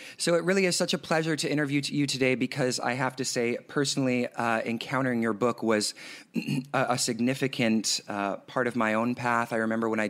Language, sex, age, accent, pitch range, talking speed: English, male, 30-49, American, 110-130 Hz, 210 wpm